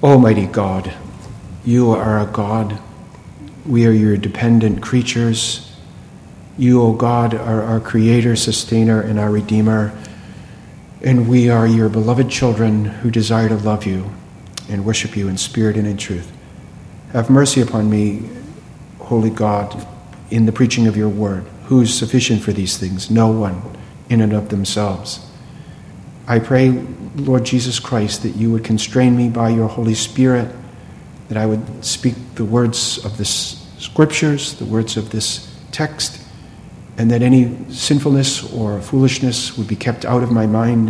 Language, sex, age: English, male, 50-69